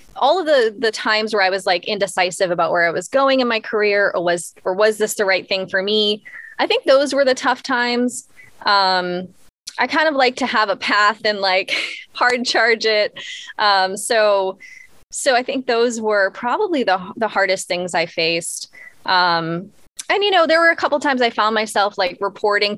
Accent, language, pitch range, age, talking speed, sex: American, English, 190-260 Hz, 20-39, 205 wpm, female